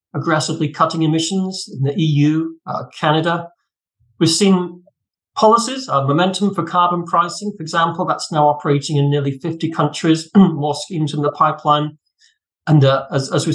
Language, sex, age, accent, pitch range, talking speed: English, male, 50-69, British, 140-180 Hz, 155 wpm